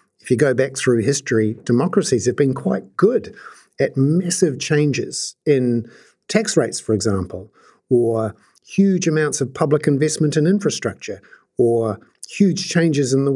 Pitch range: 115-155 Hz